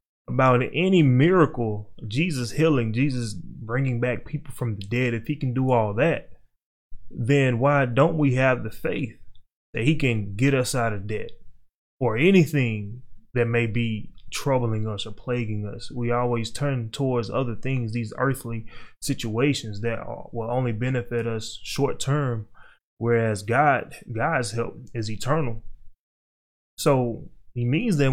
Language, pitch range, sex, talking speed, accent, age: English, 115-135 Hz, male, 145 wpm, American, 20-39